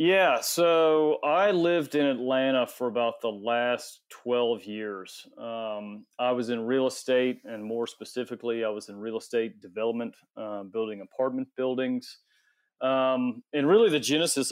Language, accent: English, American